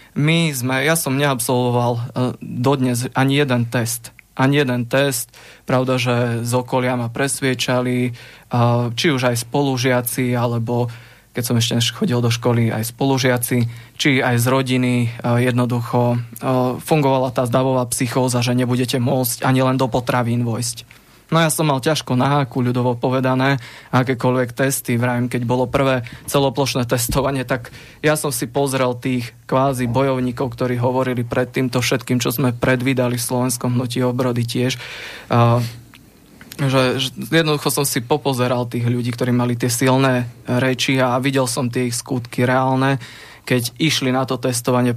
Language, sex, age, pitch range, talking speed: English, male, 20-39, 120-135 Hz, 150 wpm